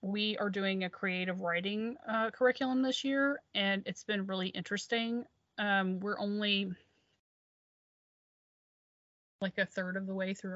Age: 30-49